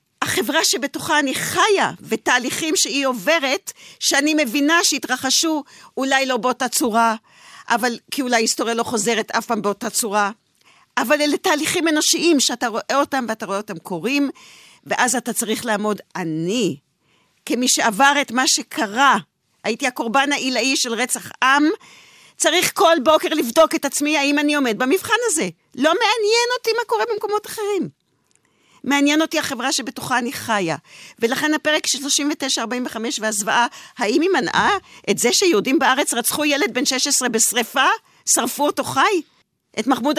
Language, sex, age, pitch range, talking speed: Hebrew, female, 50-69, 230-320 Hz, 145 wpm